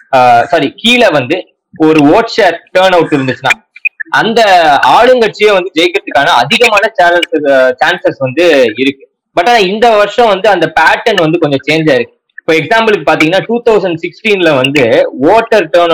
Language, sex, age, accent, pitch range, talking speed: Tamil, male, 20-39, native, 160-225 Hz, 45 wpm